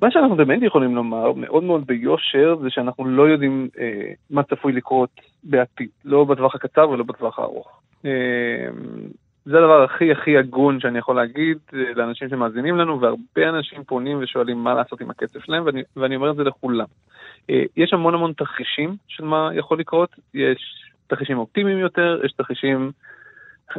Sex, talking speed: male, 170 wpm